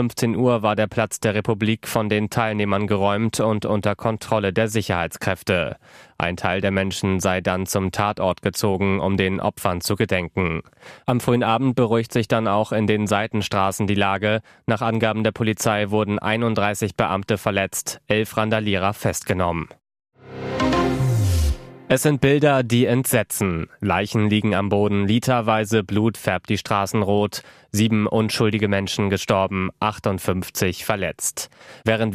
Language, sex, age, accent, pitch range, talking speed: German, male, 20-39, German, 100-110 Hz, 140 wpm